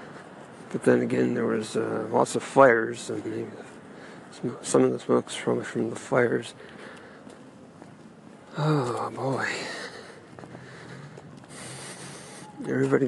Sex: male